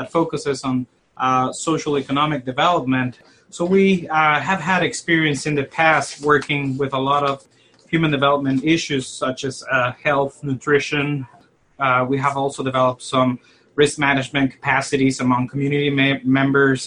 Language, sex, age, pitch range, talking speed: English, male, 30-49, 130-155 Hz, 140 wpm